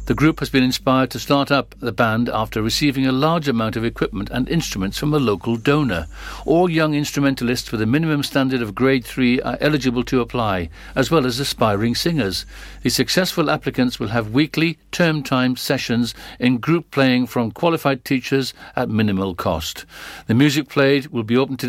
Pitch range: 120-150 Hz